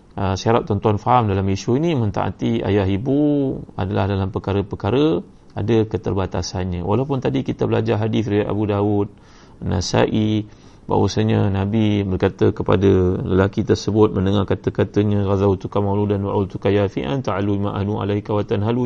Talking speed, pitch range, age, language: 135 wpm, 95-110 Hz, 30-49, Malay